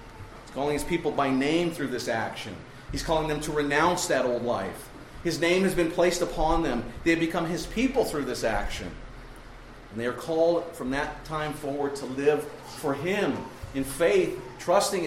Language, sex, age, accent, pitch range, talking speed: English, male, 40-59, American, 135-180 Hz, 185 wpm